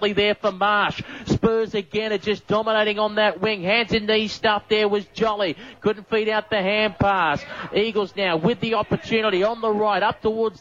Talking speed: 190 wpm